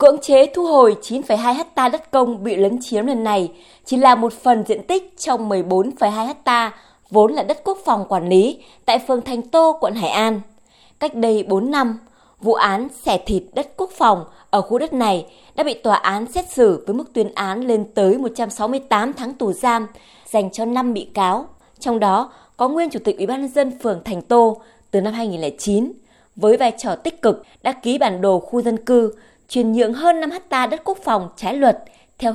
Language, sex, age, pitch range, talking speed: Vietnamese, female, 20-39, 210-265 Hz, 205 wpm